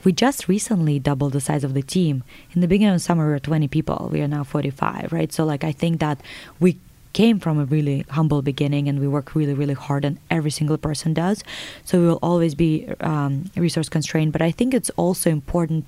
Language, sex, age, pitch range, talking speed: English, female, 20-39, 150-175 Hz, 230 wpm